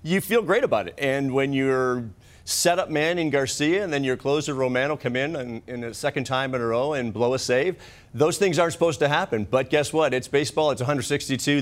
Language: English